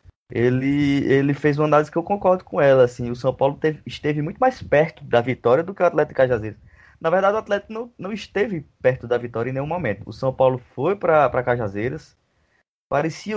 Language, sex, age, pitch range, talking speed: Portuguese, male, 20-39, 120-150 Hz, 210 wpm